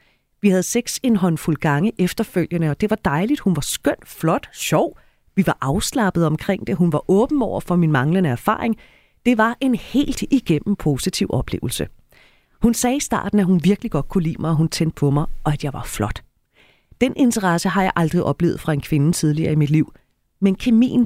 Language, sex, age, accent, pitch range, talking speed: Danish, female, 30-49, native, 160-225 Hz, 205 wpm